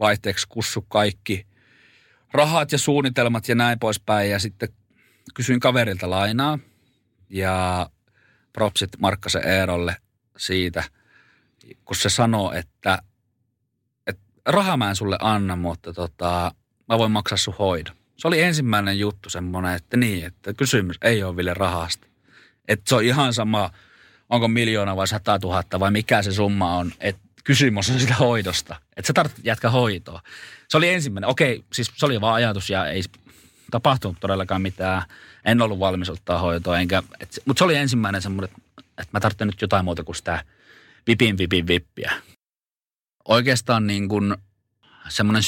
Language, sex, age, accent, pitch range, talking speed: Finnish, male, 30-49, native, 95-120 Hz, 145 wpm